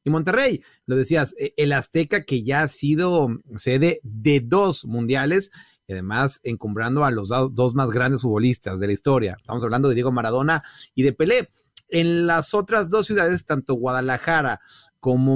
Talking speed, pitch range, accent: 165 wpm, 125-160 Hz, Mexican